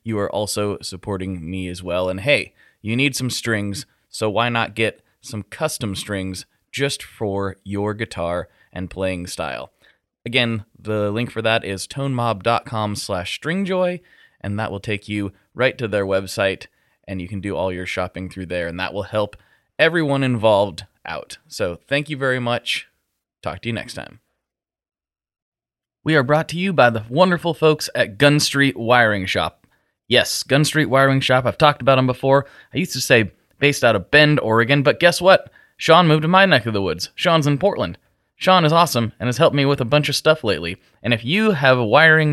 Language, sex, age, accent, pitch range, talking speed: English, male, 20-39, American, 105-150 Hz, 195 wpm